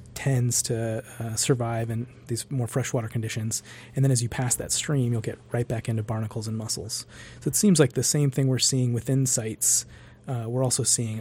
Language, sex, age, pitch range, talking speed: English, male, 30-49, 115-130 Hz, 210 wpm